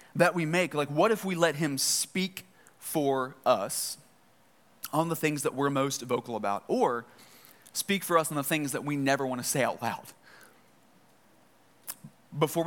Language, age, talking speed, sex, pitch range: English, 20-39, 165 wpm, male, 130-160 Hz